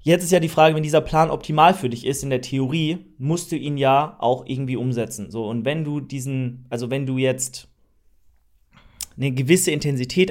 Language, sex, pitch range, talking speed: German, male, 130-160 Hz, 200 wpm